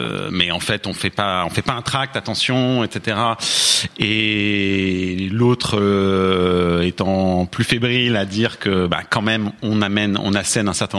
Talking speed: 165 wpm